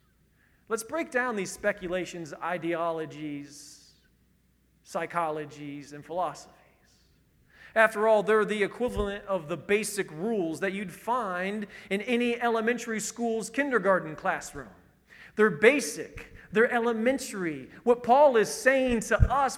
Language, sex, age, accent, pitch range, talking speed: English, male, 40-59, American, 185-255 Hz, 115 wpm